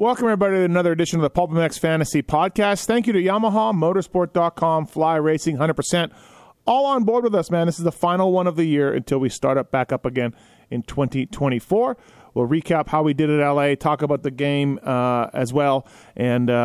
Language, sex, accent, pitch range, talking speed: English, male, American, 130-170 Hz, 205 wpm